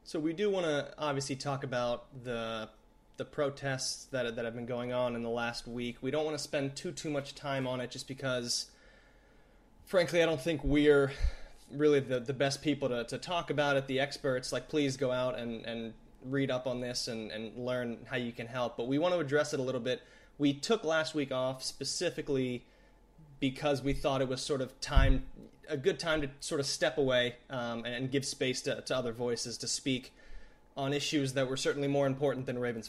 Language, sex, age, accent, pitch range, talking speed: English, male, 20-39, American, 125-140 Hz, 215 wpm